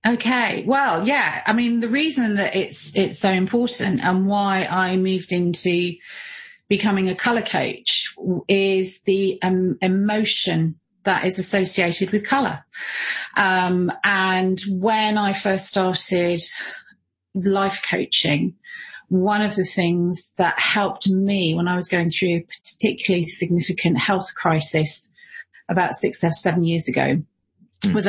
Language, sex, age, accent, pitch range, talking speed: English, female, 30-49, British, 175-200 Hz, 130 wpm